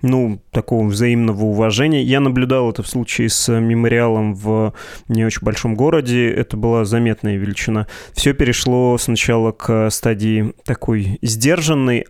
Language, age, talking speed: Russian, 20-39, 135 wpm